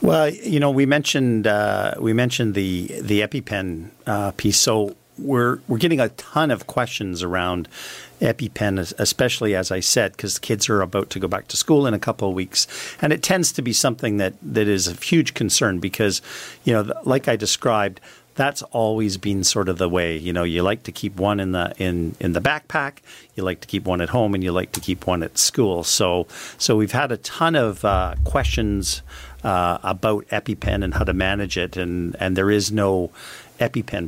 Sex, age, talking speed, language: male, 50-69, 205 wpm, English